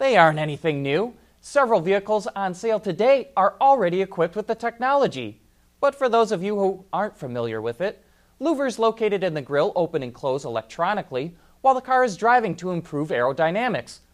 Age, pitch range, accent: 30-49, 145-215 Hz, American